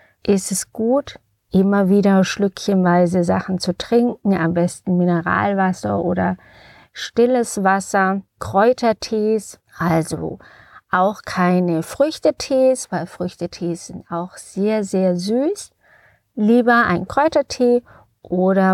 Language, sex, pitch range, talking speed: German, female, 180-225 Hz, 100 wpm